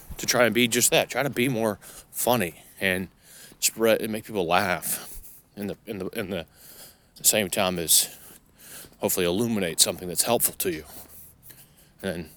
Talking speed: 165 wpm